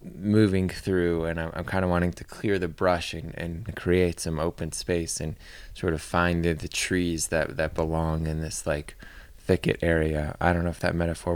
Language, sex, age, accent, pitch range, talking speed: English, male, 20-39, American, 80-95 Hz, 205 wpm